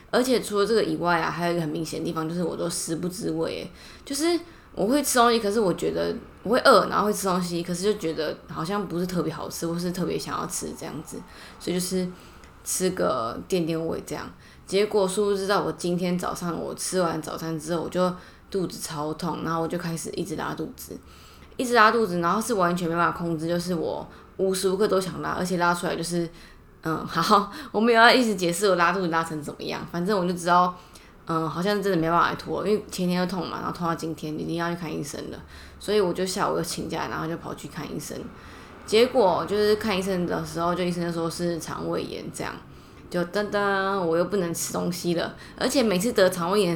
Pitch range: 165-205 Hz